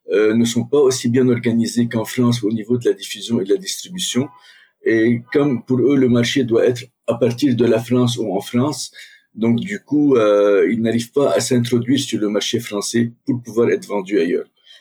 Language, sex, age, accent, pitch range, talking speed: French, male, 50-69, French, 110-130 Hz, 210 wpm